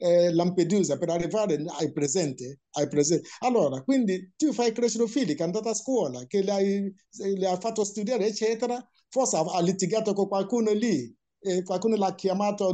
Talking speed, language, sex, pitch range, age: 165 wpm, Italian, male, 150-215 Hz, 60-79